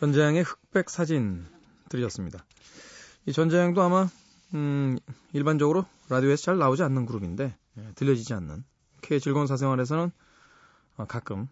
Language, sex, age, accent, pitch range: Korean, male, 20-39, native, 120-170 Hz